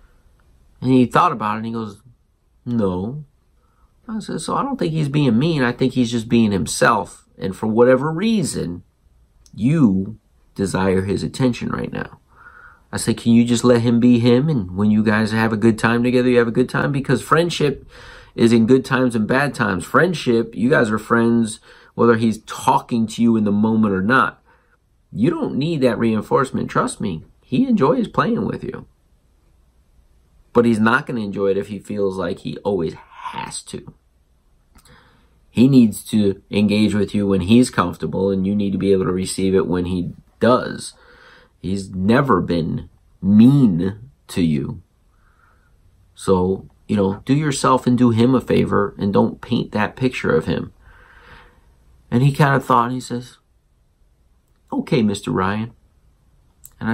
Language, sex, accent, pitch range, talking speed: English, male, American, 95-125 Hz, 170 wpm